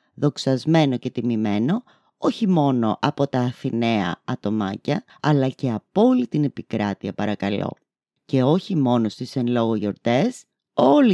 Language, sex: Greek, female